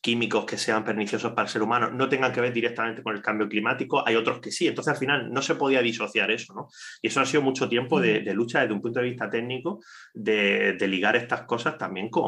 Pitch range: 105-130 Hz